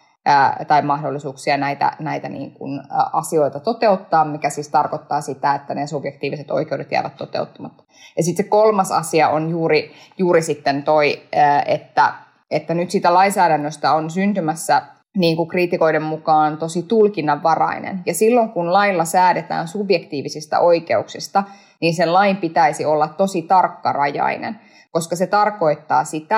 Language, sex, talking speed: Finnish, female, 130 wpm